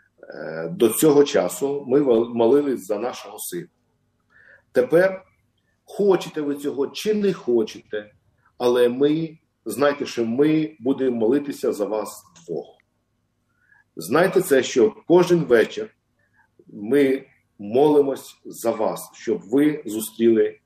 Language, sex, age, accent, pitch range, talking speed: Ukrainian, male, 50-69, native, 120-175 Hz, 105 wpm